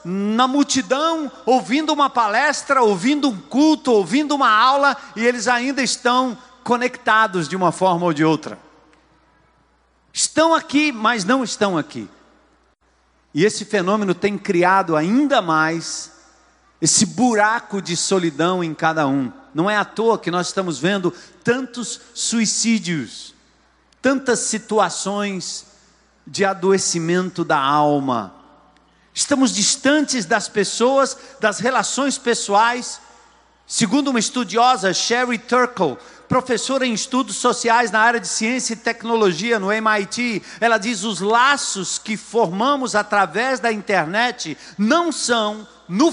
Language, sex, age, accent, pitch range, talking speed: Portuguese, male, 50-69, Brazilian, 195-255 Hz, 120 wpm